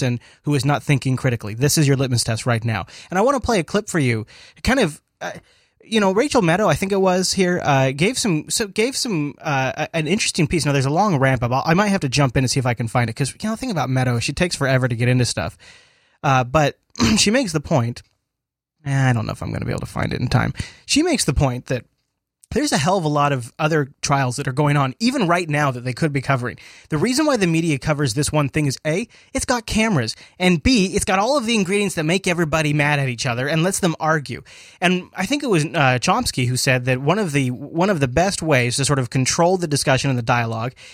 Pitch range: 130-180 Hz